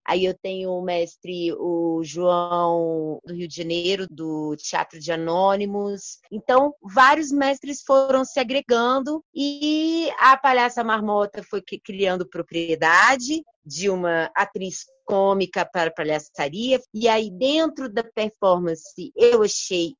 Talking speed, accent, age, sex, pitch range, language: 125 wpm, Brazilian, 30-49, female, 175-245 Hz, Portuguese